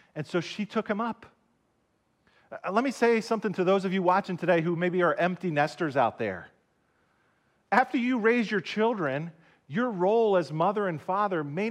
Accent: American